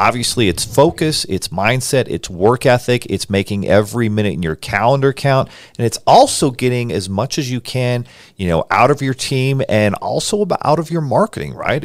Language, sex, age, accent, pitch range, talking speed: English, male, 40-59, American, 100-125 Hz, 200 wpm